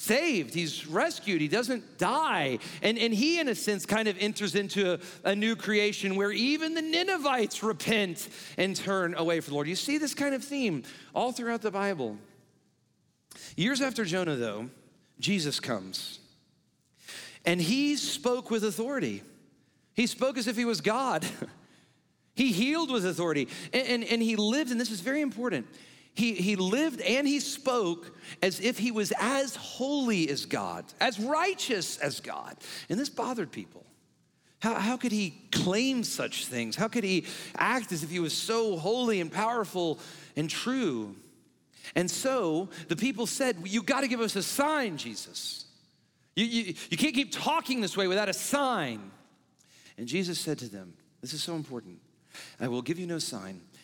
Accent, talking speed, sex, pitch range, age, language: American, 175 wpm, male, 170-250 Hz, 40-59, English